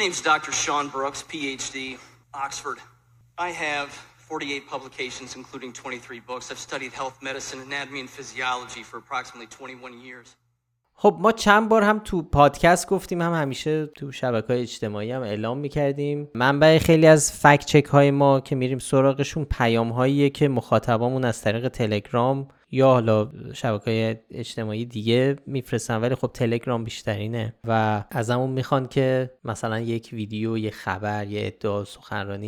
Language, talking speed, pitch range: Persian, 110 wpm, 110-135 Hz